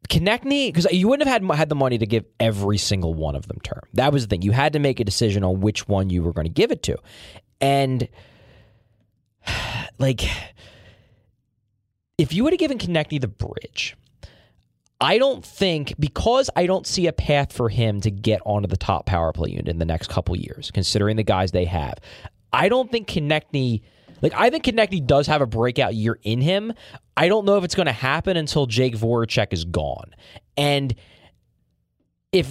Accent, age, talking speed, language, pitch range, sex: American, 20-39, 195 wpm, English, 105-170 Hz, male